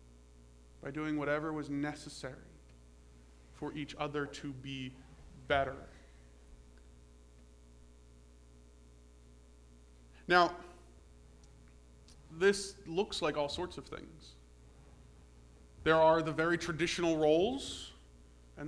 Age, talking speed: 20-39, 85 wpm